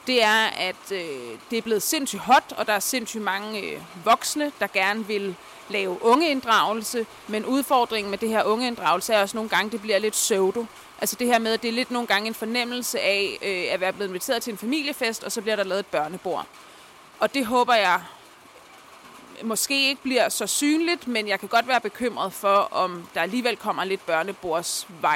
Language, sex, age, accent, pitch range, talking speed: Danish, female, 30-49, native, 200-245 Hz, 205 wpm